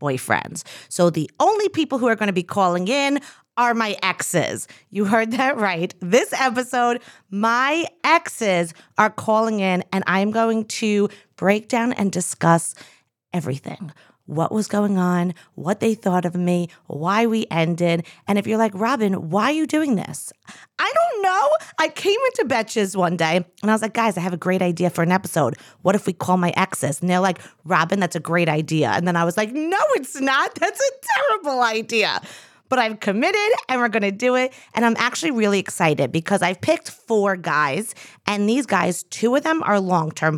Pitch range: 175-230 Hz